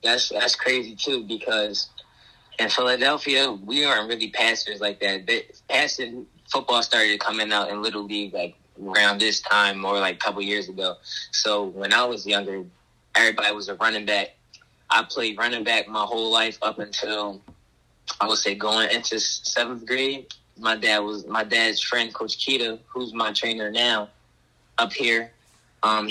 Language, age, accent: English, 20-39, American